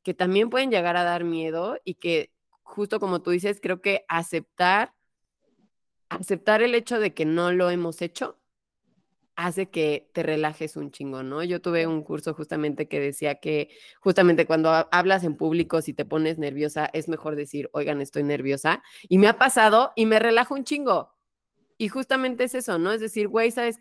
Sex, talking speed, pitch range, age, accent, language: female, 185 wpm, 160-210 Hz, 20-39, Mexican, Spanish